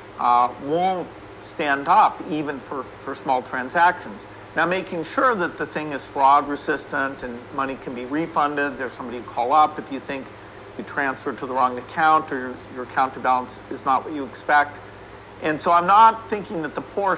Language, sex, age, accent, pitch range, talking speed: English, male, 50-69, American, 120-155 Hz, 185 wpm